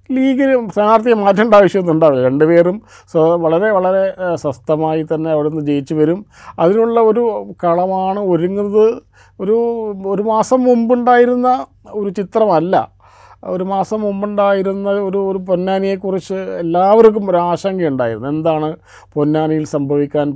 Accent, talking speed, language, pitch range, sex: native, 105 wpm, Malayalam, 150-195 Hz, male